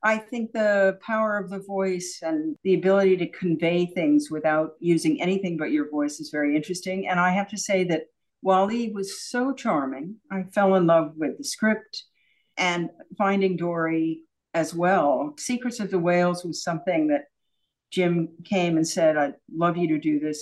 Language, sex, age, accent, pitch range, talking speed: English, female, 60-79, American, 155-205 Hz, 180 wpm